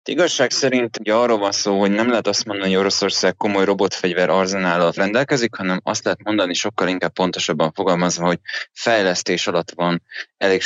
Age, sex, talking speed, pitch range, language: 20-39, male, 170 wpm, 85-95 Hz, Hungarian